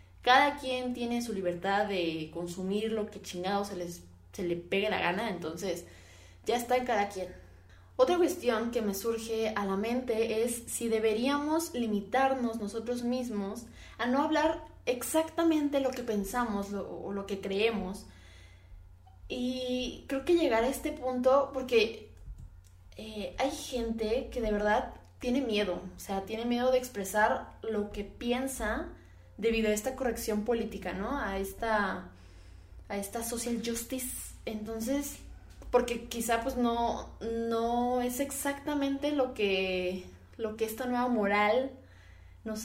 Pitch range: 195-250 Hz